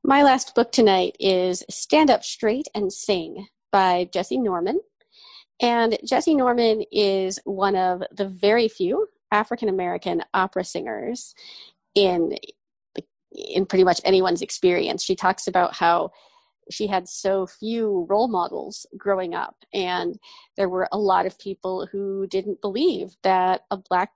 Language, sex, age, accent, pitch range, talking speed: English, female, 30-49, American, 185-245 Hz, 140 wpm